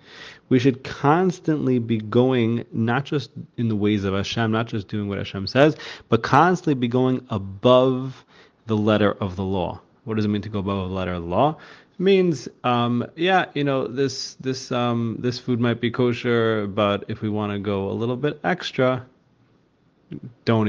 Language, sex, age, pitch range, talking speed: English, male, 30-49, 100-120 Hz, 190 wpm